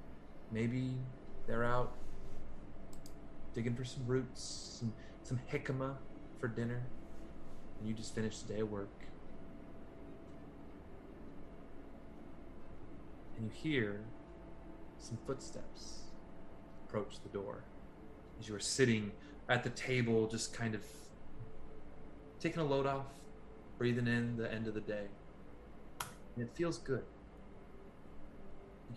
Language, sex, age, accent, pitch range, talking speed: English, male, 20-39, American, 100-125 Hz, 110 wpm